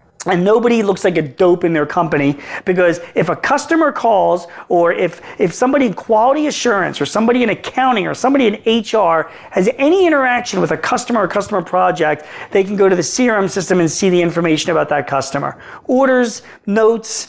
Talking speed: 185 wpm